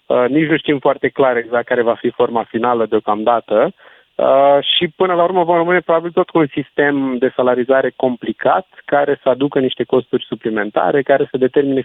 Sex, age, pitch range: male, 20-39, 120-150 Hz